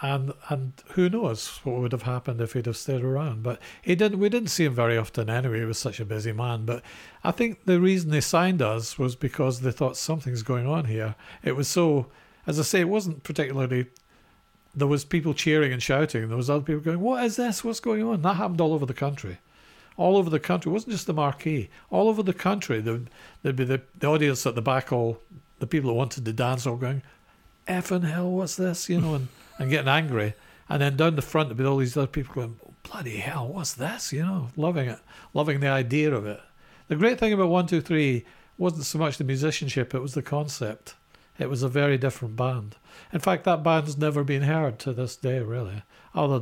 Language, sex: English, male